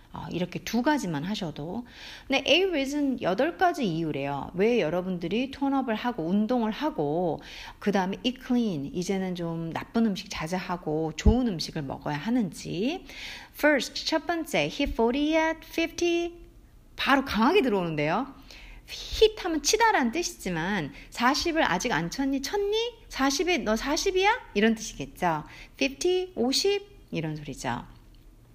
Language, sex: Korean, female